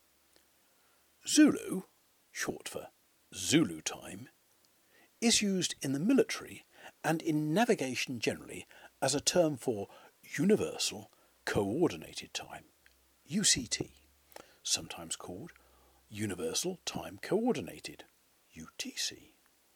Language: English